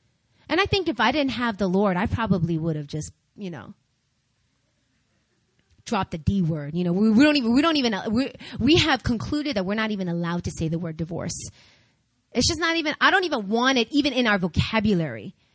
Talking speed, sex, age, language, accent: 215 wpm, female, 30-49, English, American